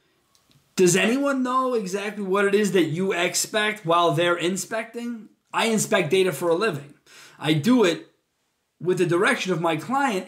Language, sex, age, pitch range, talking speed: English, male, 20-39, 160-210 Hz, 165 wpm